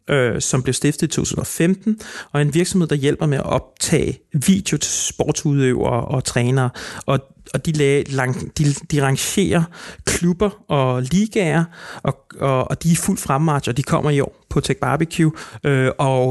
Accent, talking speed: native, 175 wpm